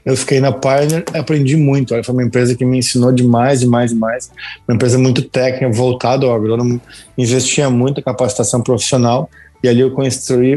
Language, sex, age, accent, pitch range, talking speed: Portuguese, male, 20-39, Brazilian, 120-140 Hz, 175 wpm